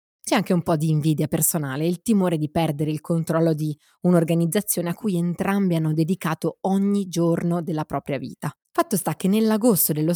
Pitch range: 155-200 Hz